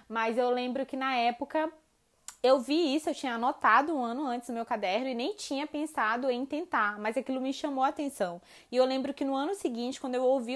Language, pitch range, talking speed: Portuguese, 220-265 Hz, 225 wpm